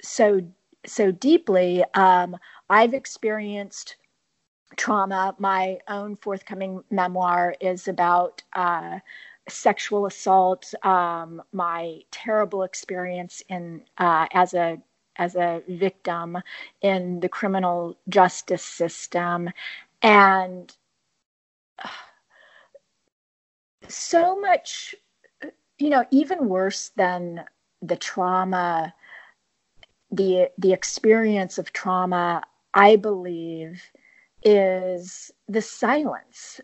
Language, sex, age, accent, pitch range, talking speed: English, female, 40-59, American, 180-220 Hz, 85 wpm